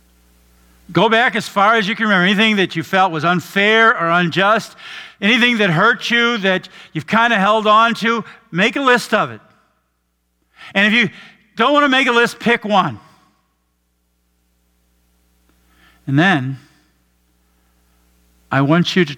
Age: 50-69